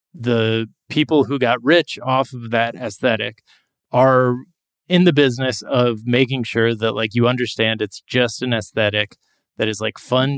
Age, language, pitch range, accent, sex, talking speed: 20-39, English, 110-130 Hz, American, male, 160 wpm